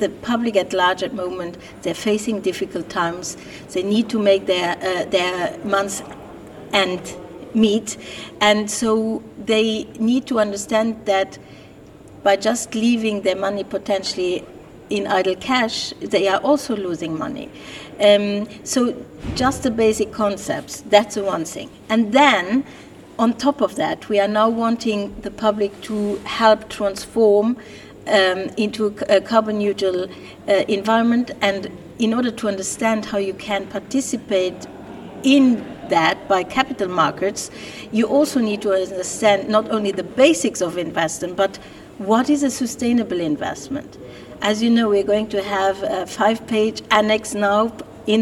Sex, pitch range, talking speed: female, 195-225 Hz, 150 wpm